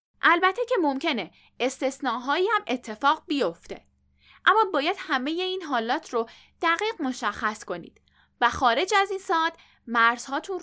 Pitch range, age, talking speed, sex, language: 230-340 Hz, 10-29, 125 wpm, female, Persian